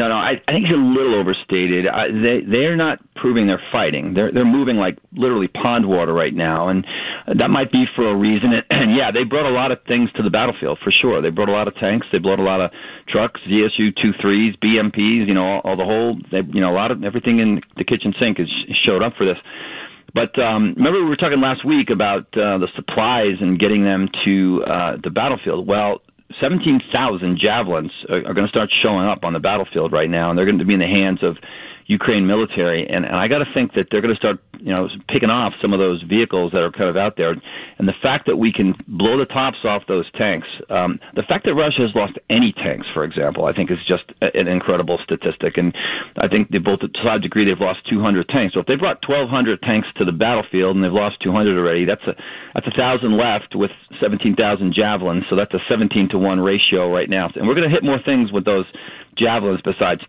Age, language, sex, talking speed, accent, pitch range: 40-59, English, male, 240 wpm, American, 95-115 Hz